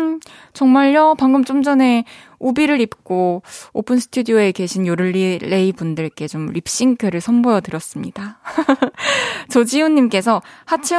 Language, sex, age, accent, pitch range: Korean, female, 20-39, native, 185-260 Hz